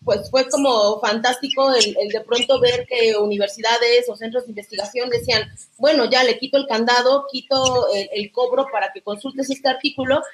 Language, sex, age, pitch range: Spanish, female, 30-49, 215-275 Hz